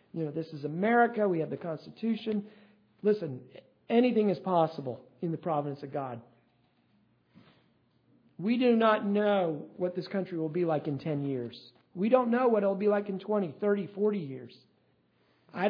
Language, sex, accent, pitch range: English, male, American, 190-240 Hz